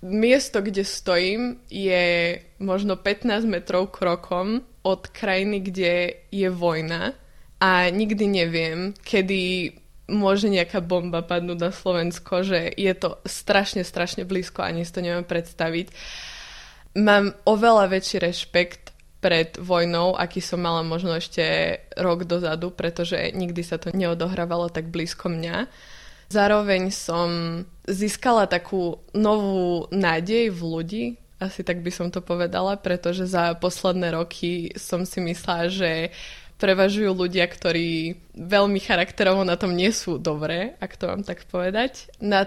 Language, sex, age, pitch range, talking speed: Slovak, female, 20-39, 175-195 Hz, 130 wpm